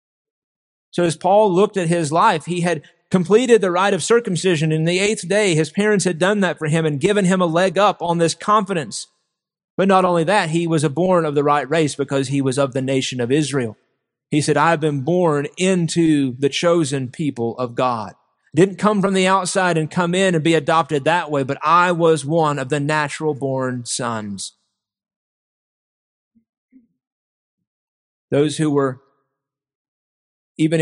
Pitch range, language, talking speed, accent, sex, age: 150-190 Hz, English, 175 wpm, American, male, 40-59